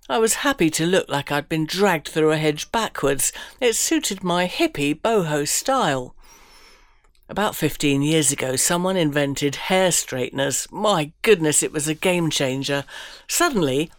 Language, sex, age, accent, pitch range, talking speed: English, female, 60-79, British, 140-210 Hz, 145 wpm